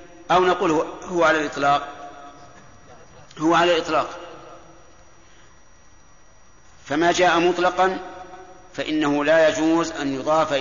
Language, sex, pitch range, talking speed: Arabic, male, 145-175 Hz, 90 wpm